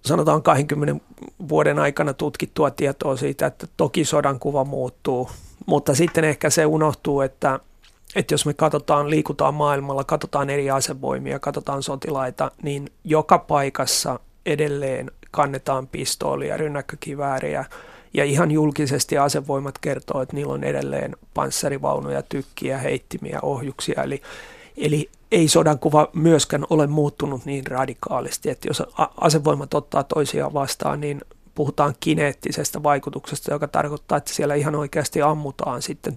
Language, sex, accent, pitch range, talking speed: Finnish, male, native, 135-150 Hz, 130 wpm